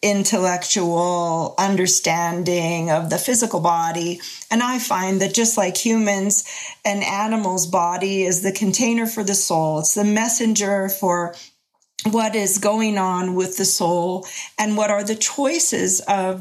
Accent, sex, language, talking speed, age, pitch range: American, female, English, 145 wpm, 40-59, 185-225 Hz